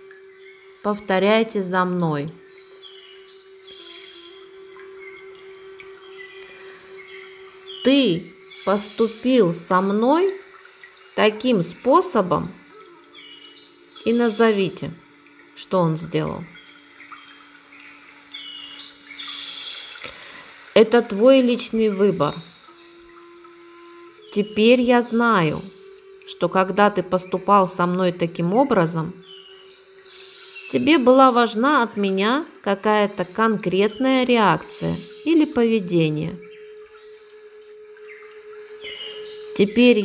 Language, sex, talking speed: Russian, female, 60 wpm